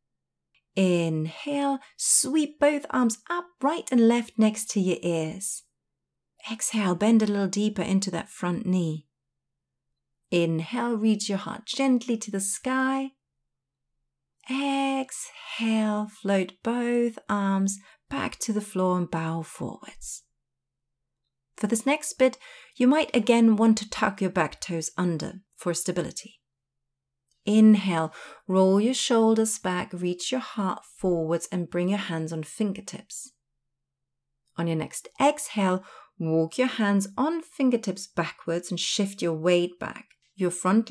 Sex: female